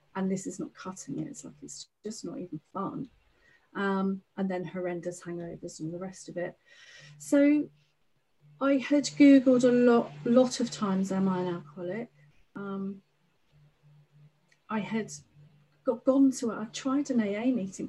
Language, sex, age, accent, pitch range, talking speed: English, female, 40-59, British, 180-210 Hz, 160 wpm